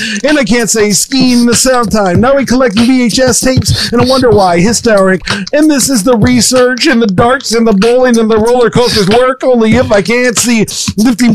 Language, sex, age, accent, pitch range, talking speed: English, male, 50-69, American, 215-255 Hz, 210 wpm